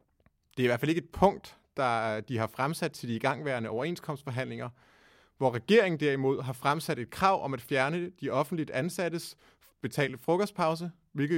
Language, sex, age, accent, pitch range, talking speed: Danish, male, 30-49, native, 120-170 Hz, 170 wpm